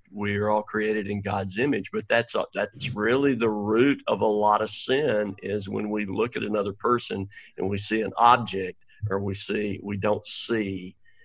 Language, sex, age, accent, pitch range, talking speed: English, male, 50-69, American, 100-125 Hz, 195 wpm